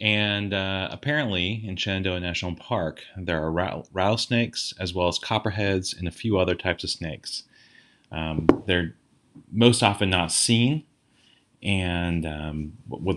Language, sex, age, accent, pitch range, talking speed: English, male, 30-49, American, 85-100 Hz, 135 wpm